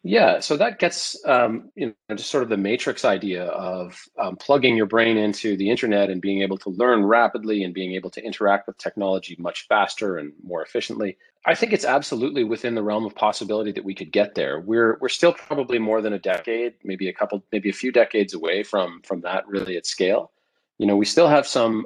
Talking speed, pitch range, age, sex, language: 220 wpm, 95-115 Hz, 30-49, male, English